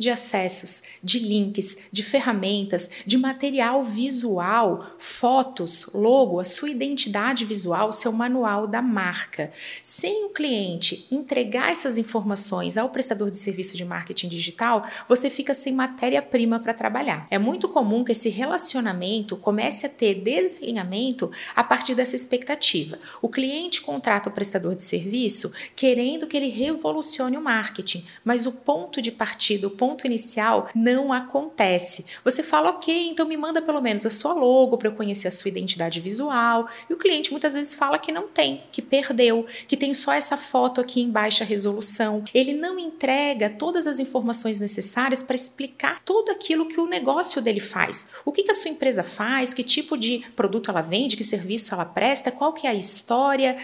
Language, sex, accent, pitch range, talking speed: Portuguese, female, Brazilian, 210-275 Hz, 165 wpm